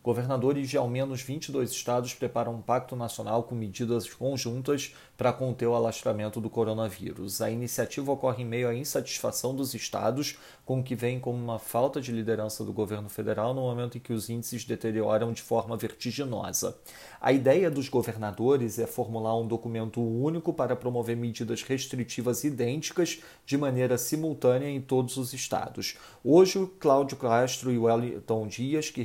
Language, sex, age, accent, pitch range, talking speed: Portuguese, male, 40-59, Brazilian, 115-135 Hz, 160 wpm